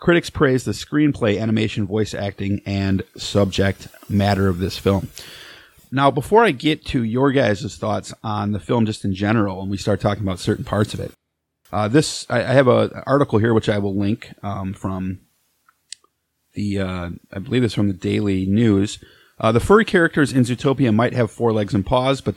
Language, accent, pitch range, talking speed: English, American, 100-140 Hz, 195 wpm